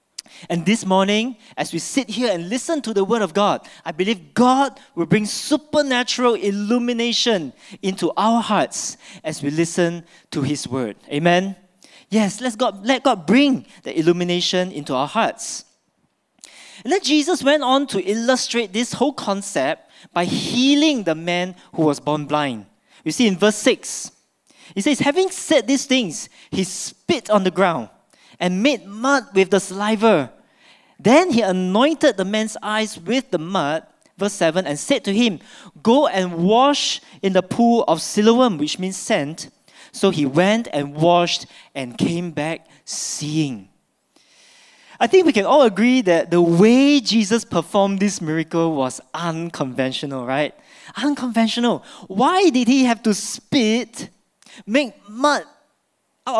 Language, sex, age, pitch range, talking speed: English, male, 20-39, 175-255 Hz, 150 wpm